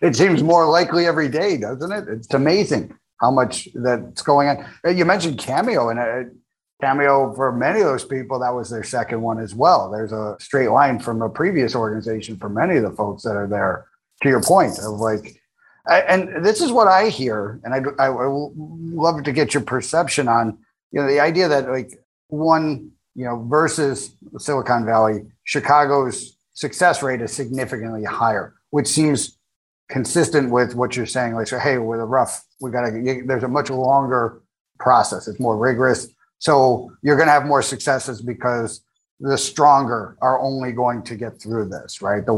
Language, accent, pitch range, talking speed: English, American, 115-145 Hz, 185 wpm